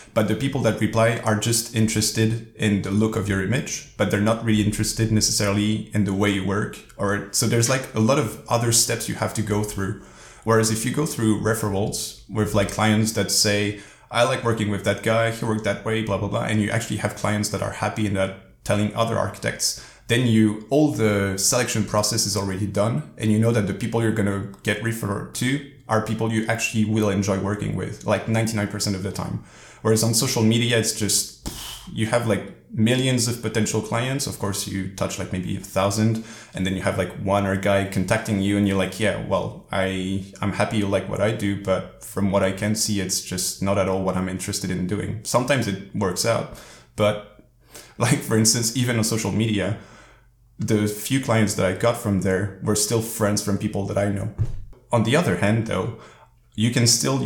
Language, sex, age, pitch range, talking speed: English, male, 30-49, 100-115 Hz, 215 wpm